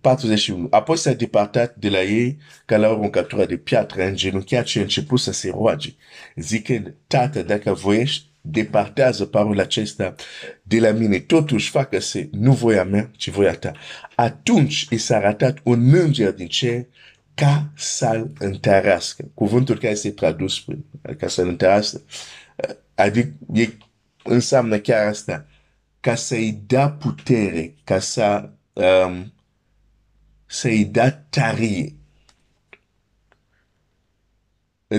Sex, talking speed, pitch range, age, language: male, 80 wpm, 100-130 Hz, 50-69, Romanian